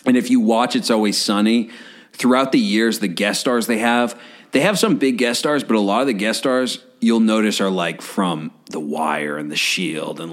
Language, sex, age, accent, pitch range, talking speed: English, male, 40-59, American, 100-135 Hz, 225 wpm